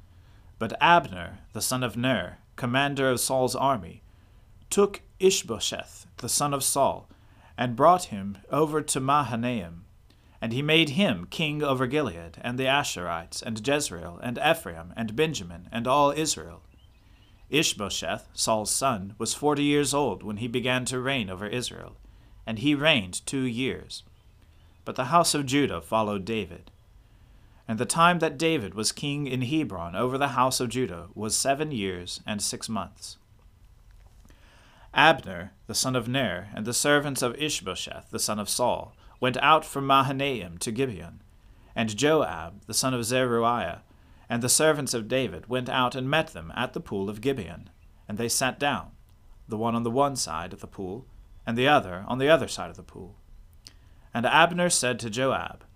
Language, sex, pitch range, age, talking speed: English, male, 100-135 Hz, 40-59, 170 wpm